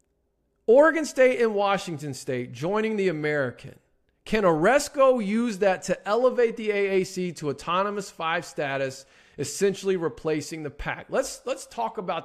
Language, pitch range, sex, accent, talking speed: English, 150-220 Hz, male, American, 135 wpm